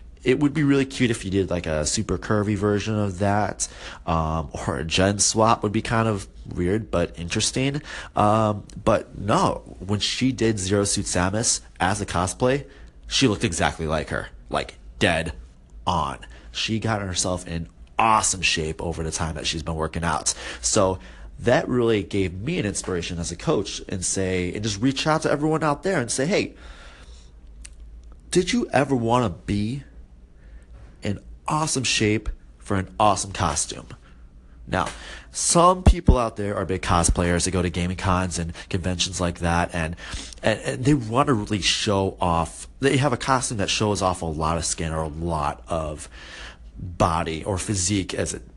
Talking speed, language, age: 175 wpm, English, 30-49